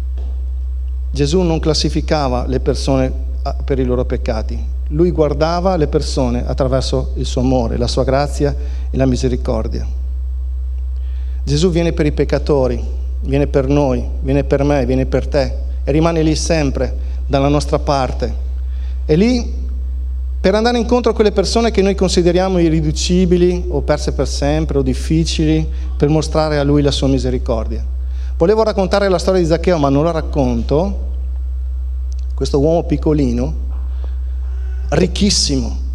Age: 40-59